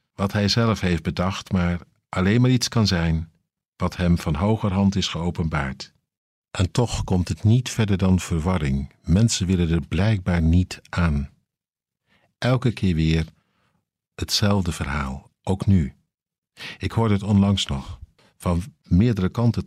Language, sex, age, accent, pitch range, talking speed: Dutch, male, 50-69, Dutch, 85-115 Hz, 140 wpm